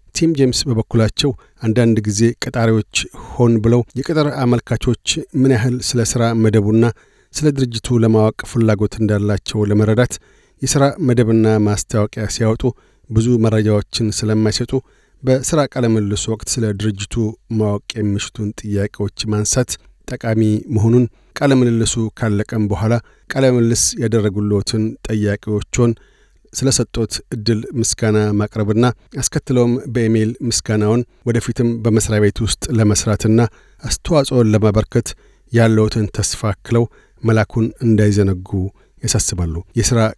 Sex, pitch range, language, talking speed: male, 105-120 Hz, Amharic, 90 wpm